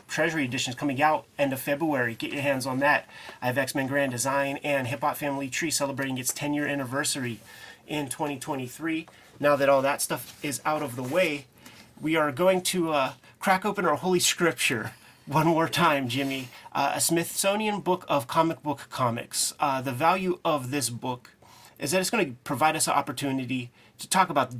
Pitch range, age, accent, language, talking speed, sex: 130-155 Hz, 30-49, American, English, 190 wpm, male